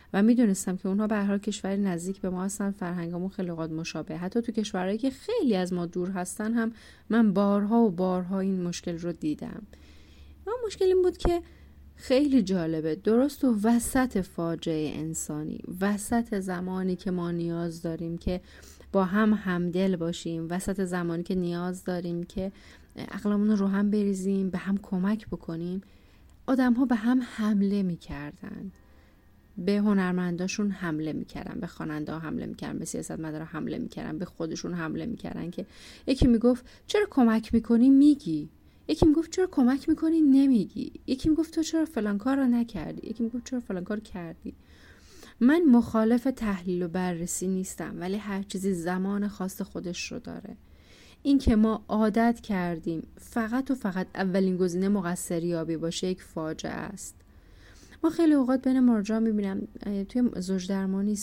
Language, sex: Persian, female